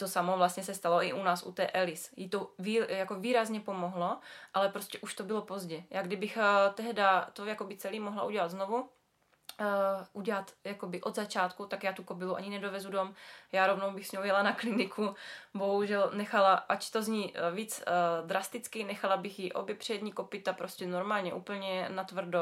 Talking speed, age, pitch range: 190 wpm, 20-39, 185-210 Hz